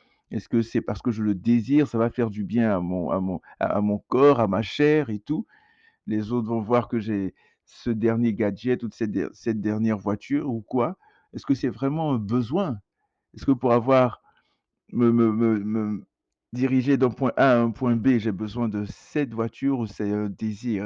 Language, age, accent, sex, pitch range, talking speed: French, 60-79, French, male, 110-135 Hz, 210 wpm